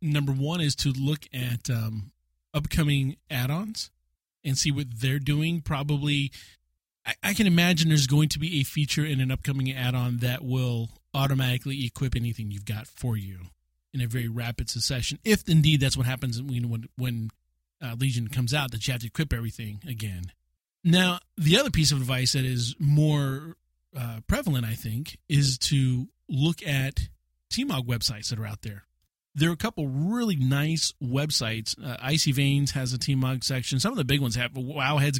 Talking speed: 180 wpm